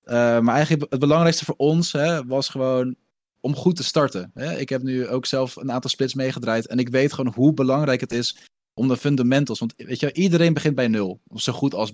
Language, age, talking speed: Dutch, 20-39, 225 wpm